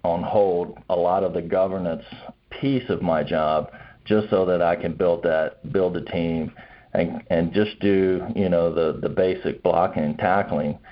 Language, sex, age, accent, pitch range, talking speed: English, male, 40-59, American, 85-95 Hz, 180 wpm